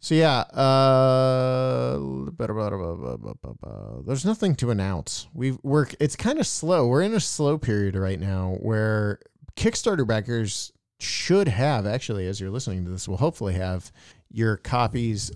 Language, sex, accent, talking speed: English, male, American, 140 wpm